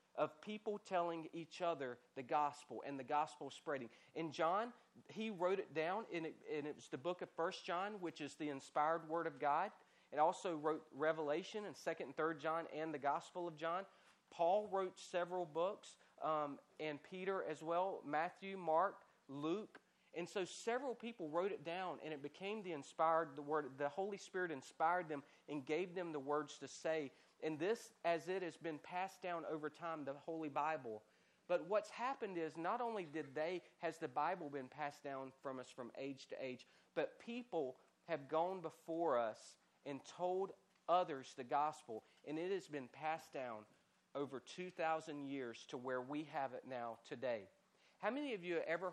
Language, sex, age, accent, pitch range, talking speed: English, male, 40-59, American, 140-180 Hz, 185 wpm